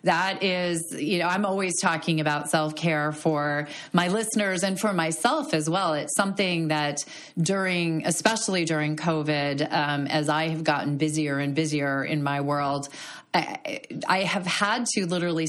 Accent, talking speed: American, 155 wpm